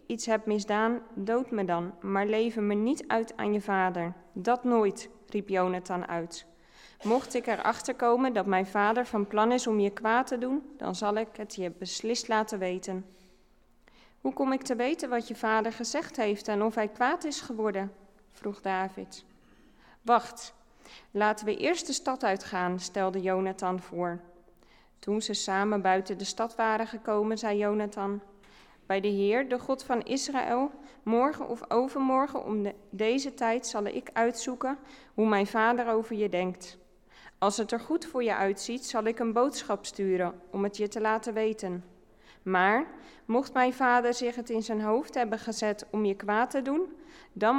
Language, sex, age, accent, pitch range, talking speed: Dutch, female, 20-39, Dutch, 195-240 Hz, 175 wpm